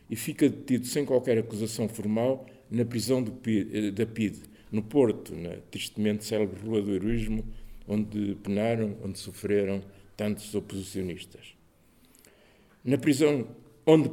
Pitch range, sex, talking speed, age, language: 105-130 Hz, male, 125 wpm, 50-69, Portuguese